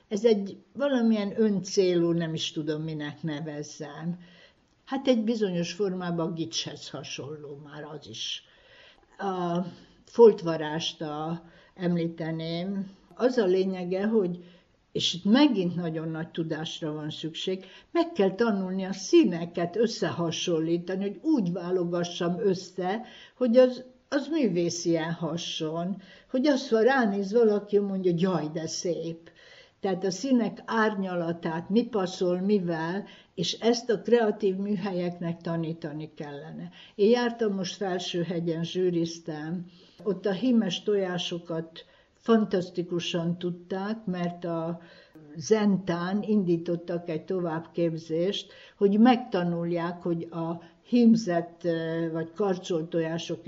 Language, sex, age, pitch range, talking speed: Hungarian, female, 60-79, 165-205 Hz, 110 wpm